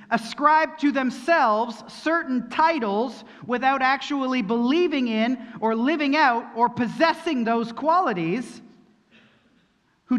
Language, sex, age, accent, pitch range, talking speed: English, male, 40-59, American, 220-290 Hz, 100 wpm